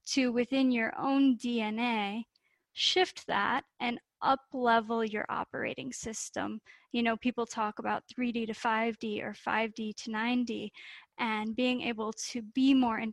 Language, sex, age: English, female, 10-29